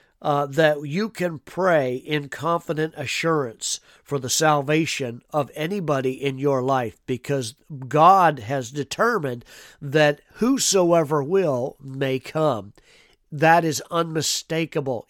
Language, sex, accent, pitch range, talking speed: English, male, American, 140-165 Hz, 110 wpm